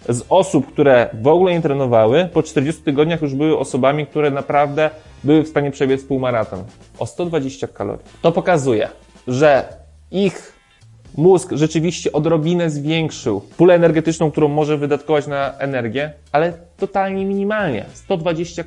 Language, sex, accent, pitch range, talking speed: Polish, male, native, 120-155 Hz, 130 wpm